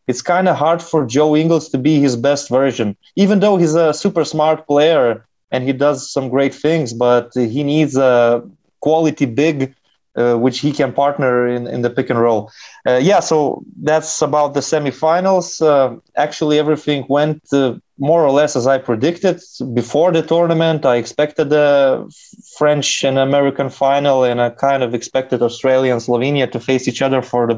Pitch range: 130-155 Hz